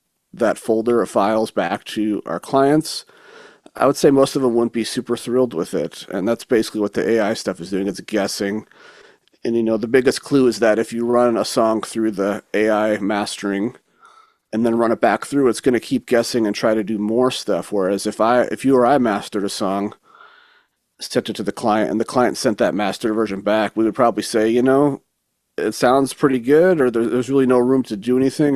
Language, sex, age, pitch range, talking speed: English, male, 40-59, 105-130 Hz, 225 wpm